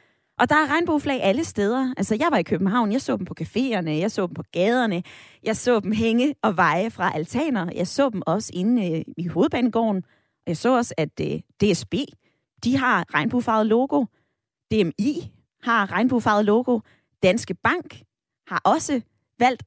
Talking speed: 170 wpm